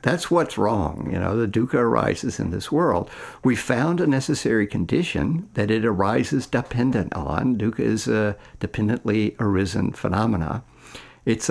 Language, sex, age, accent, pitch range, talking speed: English, male, 60-79, American, 100-125 Hz, 145 wpm